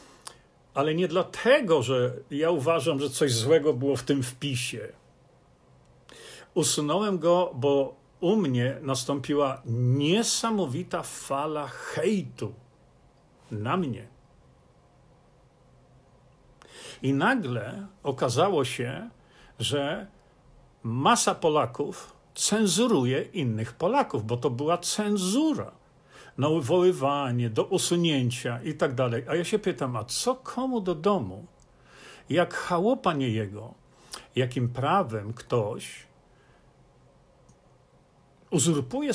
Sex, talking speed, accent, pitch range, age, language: male, 95 wpm, native, 130-200 Hz, 50-69, Polish